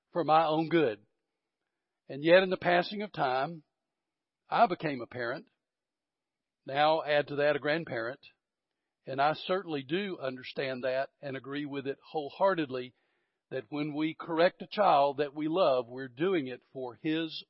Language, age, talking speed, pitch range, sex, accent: English, 50-69, 160 wpm, 145-215 Hz, male, American